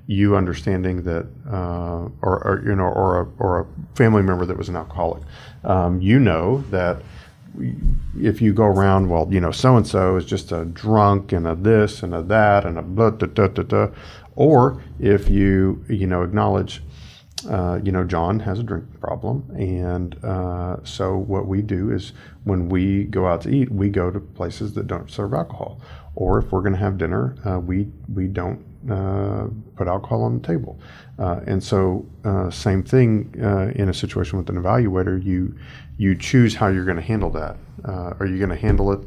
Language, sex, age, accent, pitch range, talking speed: English, male, 50-69, American, 90-100 Hz, 200 wpm